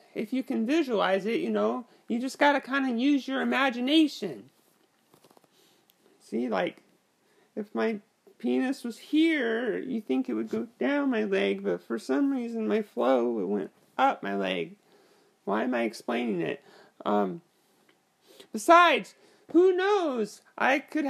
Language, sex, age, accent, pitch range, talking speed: English, male, 30-49, American, 215-300 Hz, 150 wpm